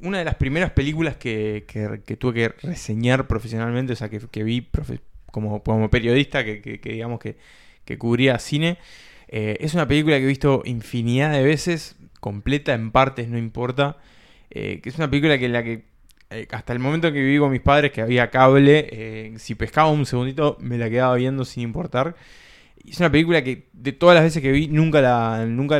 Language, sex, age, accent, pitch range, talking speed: Spanish, male, 20-39, Argentinian, 115-145 Hz, 205 wpm